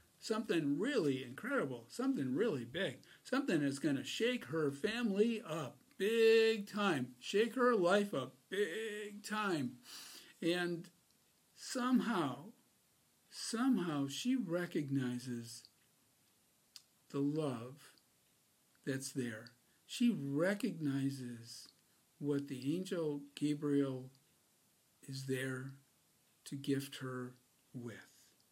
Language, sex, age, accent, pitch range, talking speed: English, male, 60-79, American, 140-205 Hz, 90 wpm